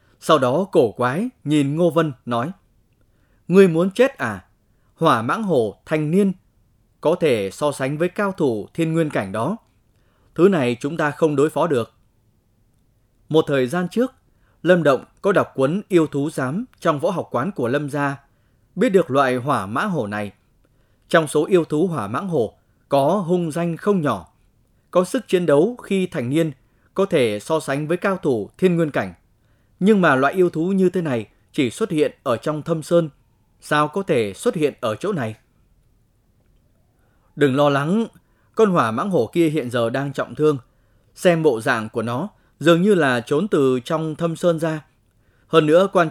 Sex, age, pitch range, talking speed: male, 20-39, 115-170 Hz, 185 wpm